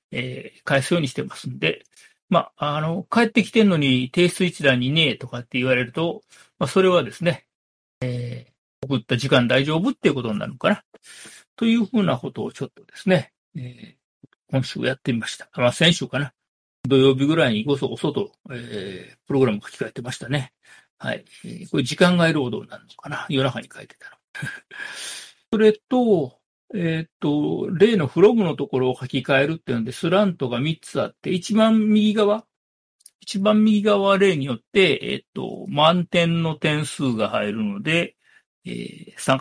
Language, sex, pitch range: Japanese, male, 130-195 Hz